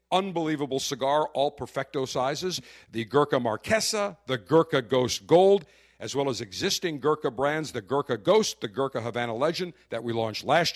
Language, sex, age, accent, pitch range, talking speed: English, male, 50-69, American, 140-190 Hz, 160 wpm